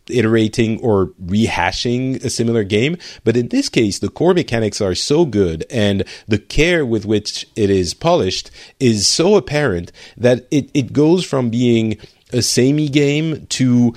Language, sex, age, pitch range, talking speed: English, male, 40-59, 100-125 Hz, 160 wpm